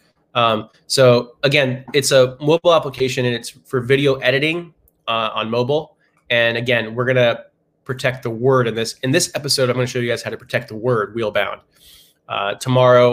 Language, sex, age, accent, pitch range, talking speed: English, male, 20-39, American, 120-140 Hz, 190 wpm